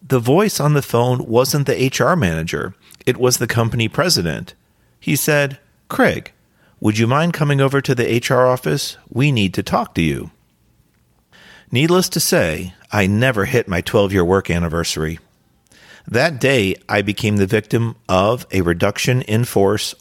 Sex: male